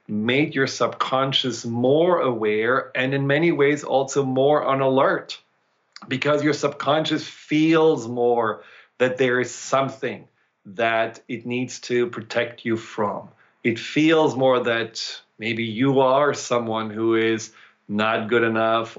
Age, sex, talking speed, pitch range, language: 40-59, male, 135 wpm, 115-135 Hz, English